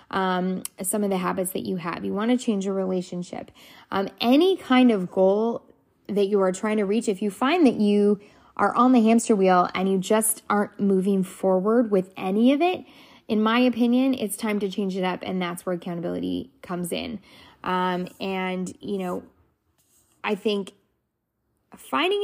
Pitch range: 185-225 Hz